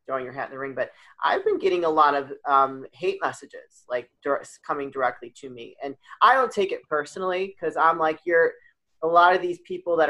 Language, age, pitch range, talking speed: English, 30-49, 140-170 Hz, 225 wpm